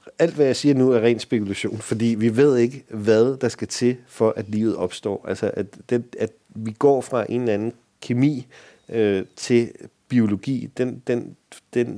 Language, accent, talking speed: Danish, native, 185 wpm